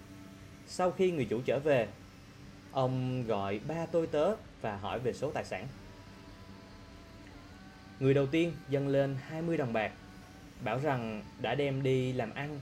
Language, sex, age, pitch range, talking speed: English, male, 20-39, 95-140 Hz, 150 wpm